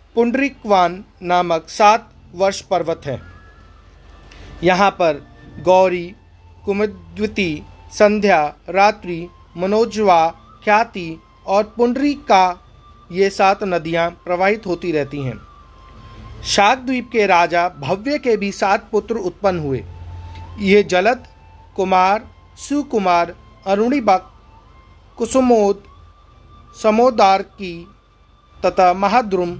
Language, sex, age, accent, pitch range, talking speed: Hindi, male, 40-59, native, 145-210 Hz, 85 wpm